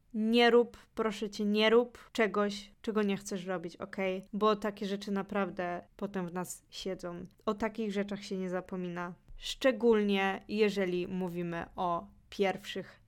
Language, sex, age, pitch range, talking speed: Polish, female, 20-39, 185-215 Hz, 140 wpm